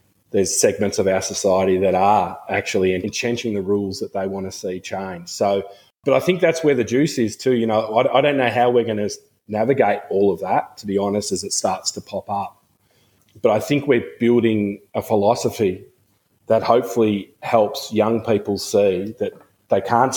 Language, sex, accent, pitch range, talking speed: English, male, Australian, 100-115 Hz, 195 wpm